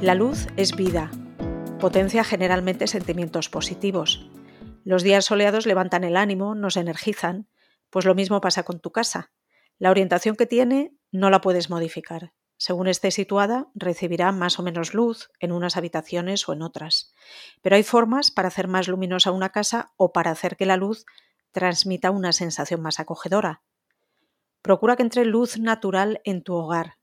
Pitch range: 175-210 Hz